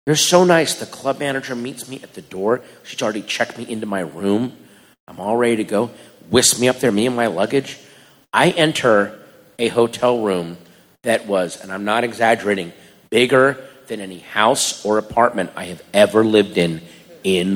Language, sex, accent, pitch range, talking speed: English, male, American, 110-160 Hz, 185 wpm